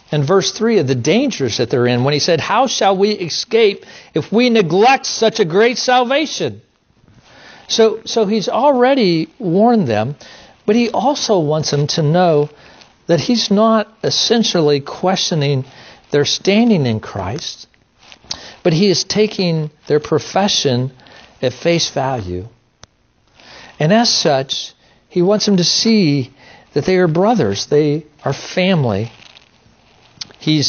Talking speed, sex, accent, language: 135 wpm, male, American, English